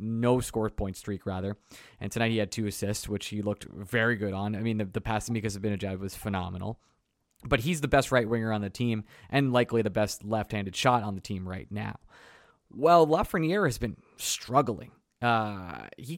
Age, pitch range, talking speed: 20-39, 105-125 Hz, 200 wpm